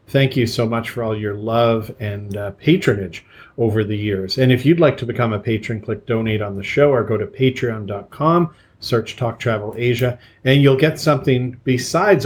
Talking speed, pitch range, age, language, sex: 195 wpm, 110-140 Hz, 40-59, English, male